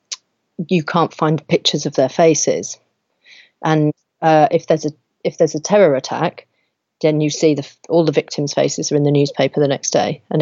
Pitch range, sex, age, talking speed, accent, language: 145-165 Hz, female, 40-59, 190 wpm, British, English